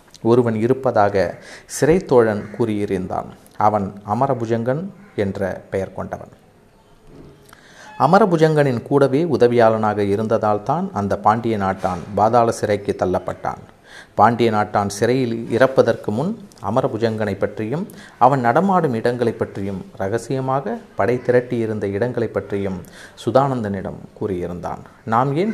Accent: native